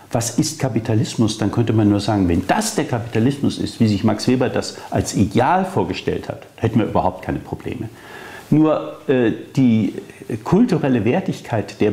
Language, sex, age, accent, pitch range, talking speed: German, male, 60-79, German, 110-155 Hz, 165 wpm